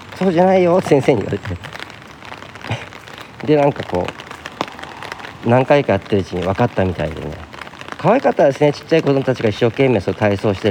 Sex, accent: male, native